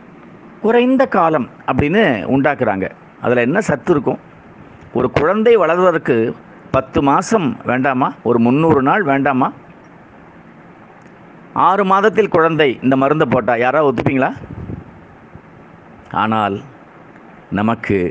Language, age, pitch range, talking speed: Tamil, 50-69, 120-180 Hz, 95 wpm